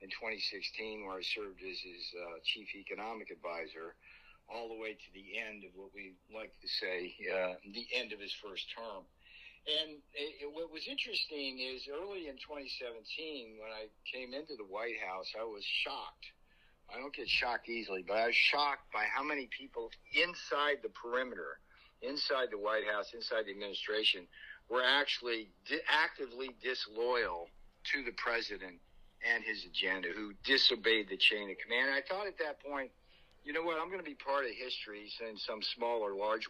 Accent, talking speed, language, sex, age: American, 180 wpm, English, male, 60-79